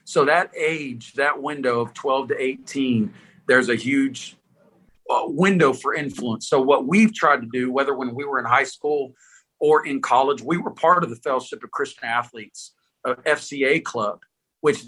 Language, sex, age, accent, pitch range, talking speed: English, male, 50-69, American, 135-170 Hz, 175 wpm